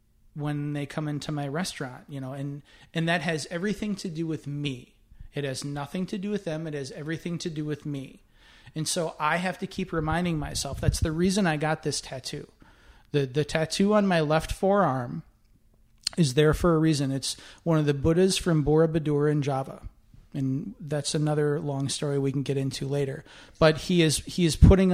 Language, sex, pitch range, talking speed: English, male, 135-160 Hz, 200 wpm